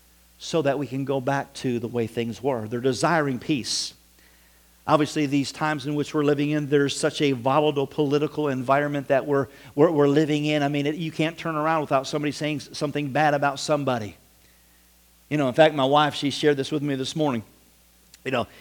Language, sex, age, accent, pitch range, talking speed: English, male, 50-69, American, 120-155 Hz, 205 wpm